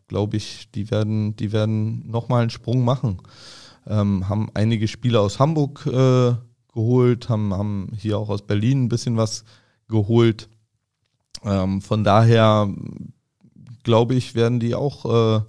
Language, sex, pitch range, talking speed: German, male, 105-125 Hz, 145 wpm